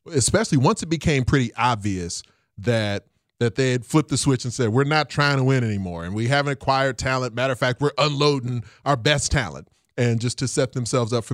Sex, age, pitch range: male, 30-49, 120-145 Hz